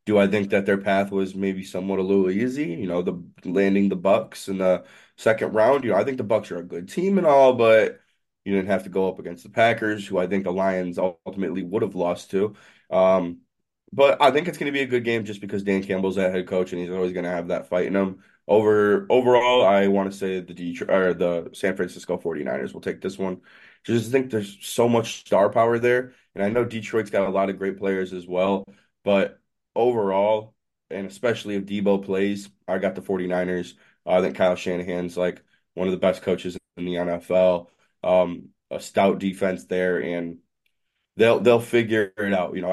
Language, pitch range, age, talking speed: English, 90-105 Hz, 20-39, 220 wpm